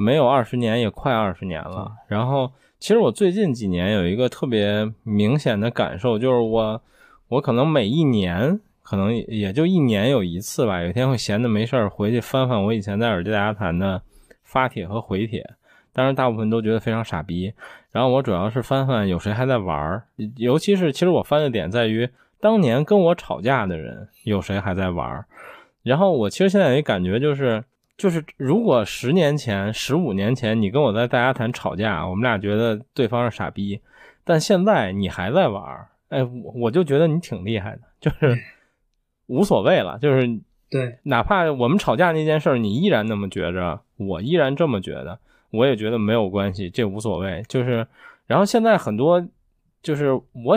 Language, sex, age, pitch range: Chinese, male, 20-39, 105-135 Hz